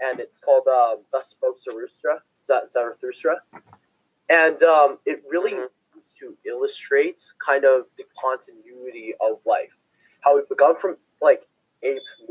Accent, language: American, English